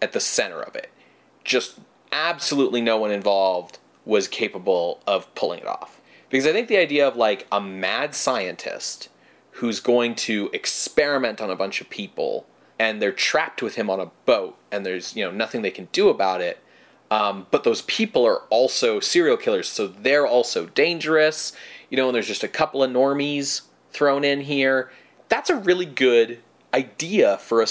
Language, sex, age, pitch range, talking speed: English, male, 30-49, 115-170 Hz, 180 wpm